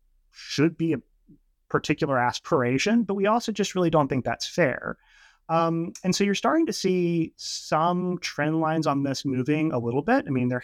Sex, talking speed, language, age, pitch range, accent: male, 185 wpm, English, 30-49, 130-165 Hz, American